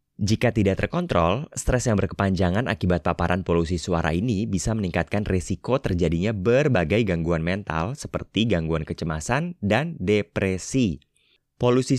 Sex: male